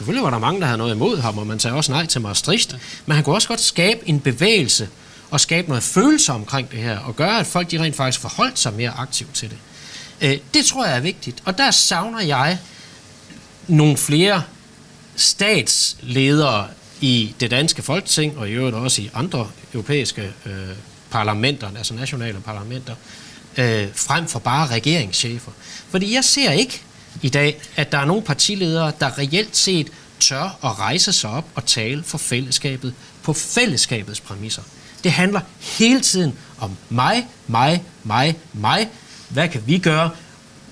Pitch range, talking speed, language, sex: 120-165 Hz, 170 wpm, Danish, male